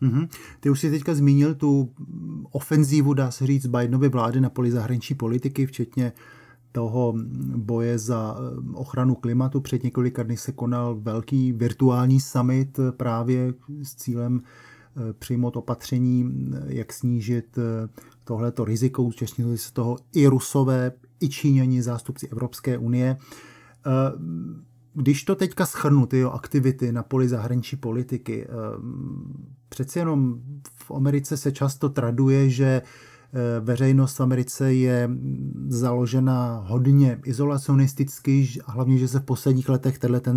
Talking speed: 125 wpm